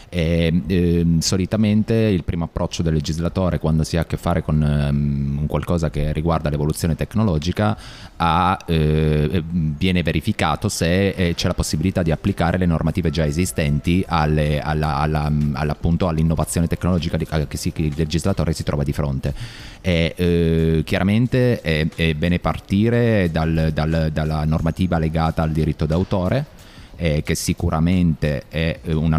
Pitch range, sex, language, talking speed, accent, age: 75-90 Hz, male, Italian, 145 wpm, native, 30-49